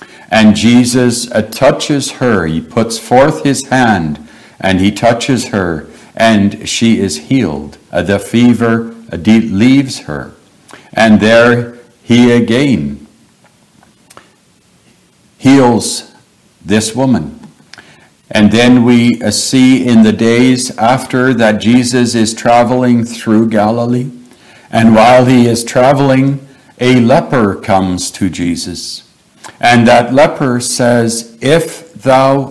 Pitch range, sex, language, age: 110-130 Hz, male, English, 60-79